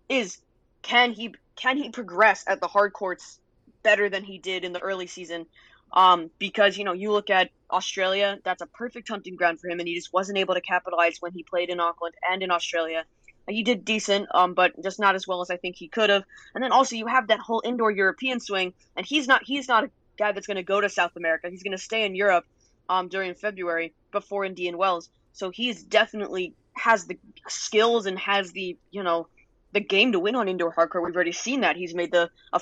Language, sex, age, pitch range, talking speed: English, female, 20-39, 180-215 Hz, 230 wpm